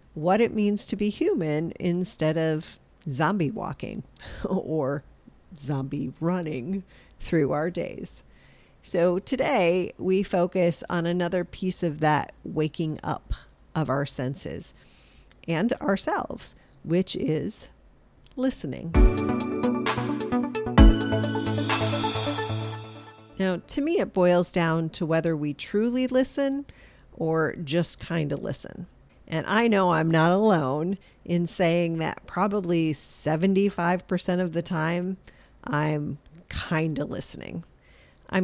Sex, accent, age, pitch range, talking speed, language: female, American, 40-59, 155-195 Hz, 110 wpm, English